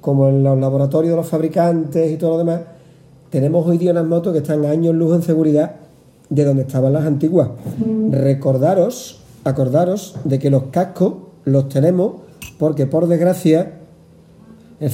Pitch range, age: 145-175 Hz, 40-59